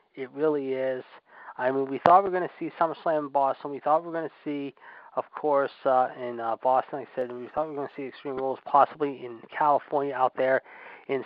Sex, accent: male, American